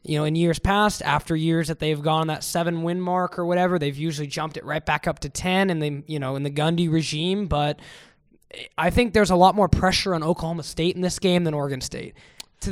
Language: English